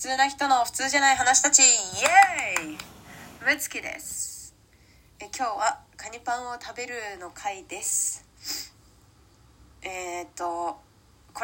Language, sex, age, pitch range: Japanese, female, 20-39, 235-390 Hz